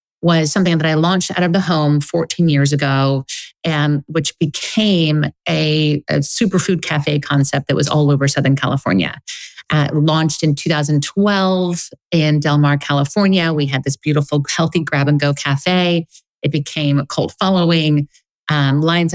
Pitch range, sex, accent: 150-185 Hz, female, American